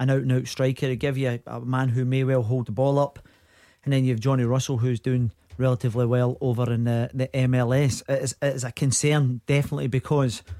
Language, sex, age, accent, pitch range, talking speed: English, male, 40-59, British, 125-140 Hz, 215 wpm